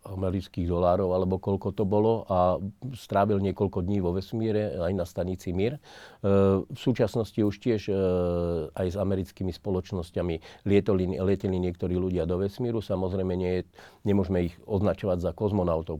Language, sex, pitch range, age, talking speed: Slovak, male, 85-100 Hz, 50-69, 140 wpm